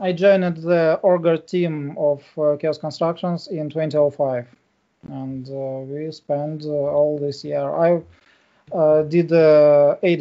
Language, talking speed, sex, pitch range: English, 135 wpm, male, 150-180 Hz